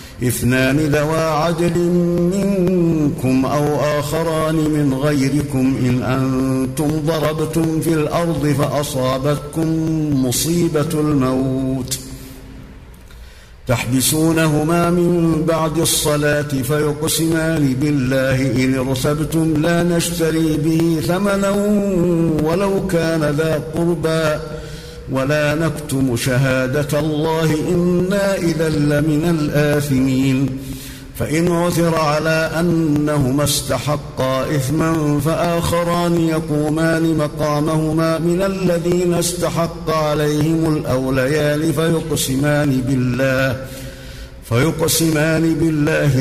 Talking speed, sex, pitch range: 75 wpm, male, 135-160 Hz